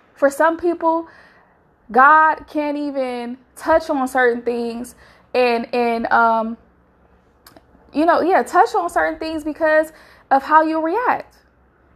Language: English